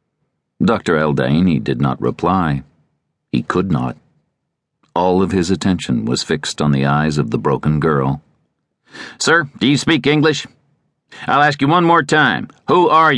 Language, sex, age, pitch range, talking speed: English, male, 50-69, 70-120 Hz, 155 wpm